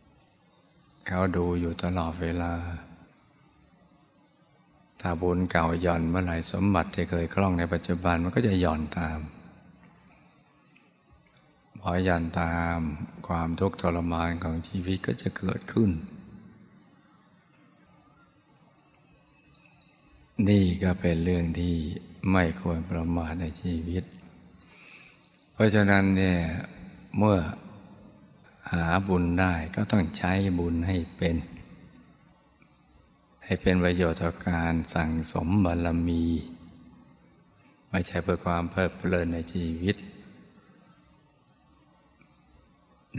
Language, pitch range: Thai, 85-90 Hz